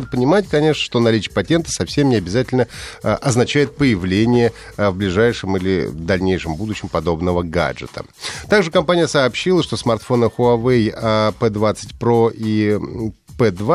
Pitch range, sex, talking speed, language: 95-135 Hz, male, 120 wpm, Russian